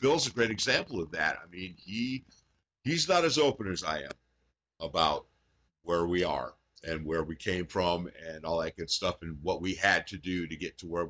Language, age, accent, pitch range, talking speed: English, 50-69, American, 80-110 Hz, 215 wpm